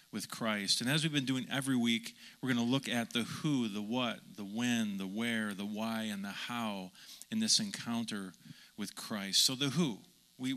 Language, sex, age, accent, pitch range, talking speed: English, male, 40-59, American, 120-155 Hz, 205 wpm